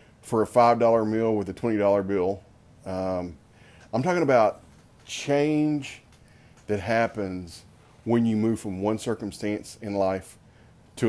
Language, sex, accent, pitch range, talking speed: English, male, American, 95-115 Hz, 130 wpm